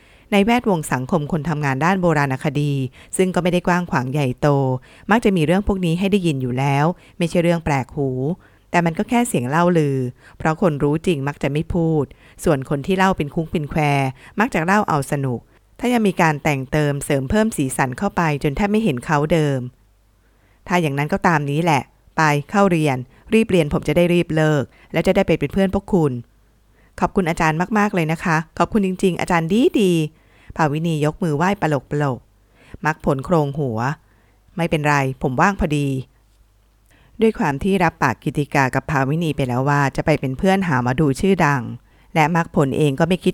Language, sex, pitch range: Thai, female, 135-180 Hz